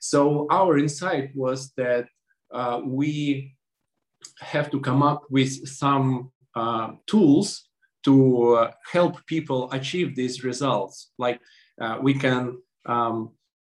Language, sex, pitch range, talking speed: English, male, 120-145 Hz, 120 wpm